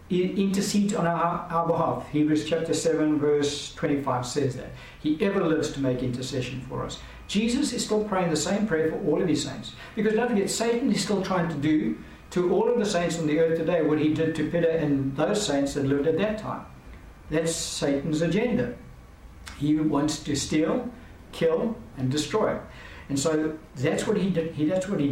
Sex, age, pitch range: male, 60-79, 135-170 Hz